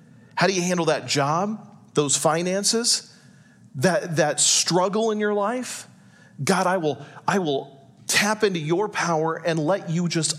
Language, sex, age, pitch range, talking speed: English, male, 40-59, 145-205 Hz, 155 wpm